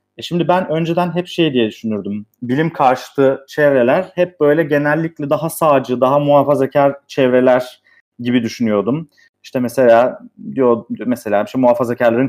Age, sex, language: 30-49, male, Turkish